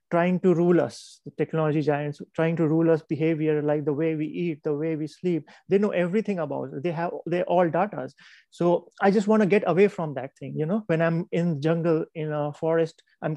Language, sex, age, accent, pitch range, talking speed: English, male, 30-49, Indian, 155-180 Hz, 235 wpm